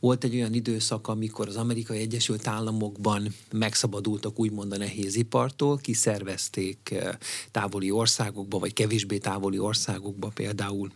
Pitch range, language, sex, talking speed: 105-125 Hz, Hungarian, male, 120 wpm